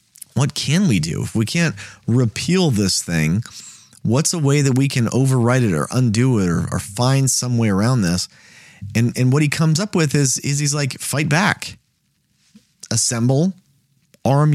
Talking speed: 175 wpm